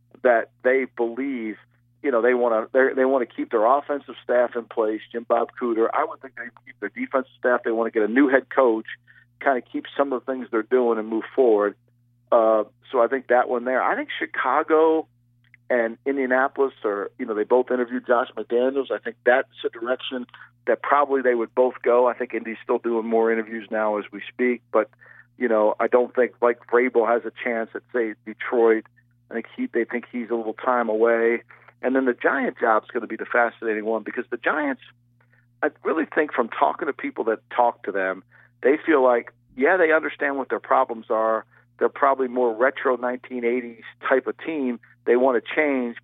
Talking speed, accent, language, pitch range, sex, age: 210 wpm, American, English, 115-125 Hz, male, 50-69